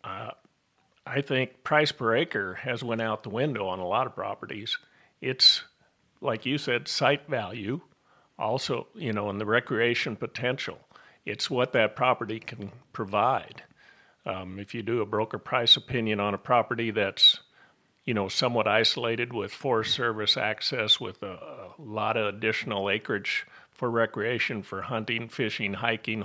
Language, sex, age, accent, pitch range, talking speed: English, male, 50-69, American, 105-130 Hz, 155 wpm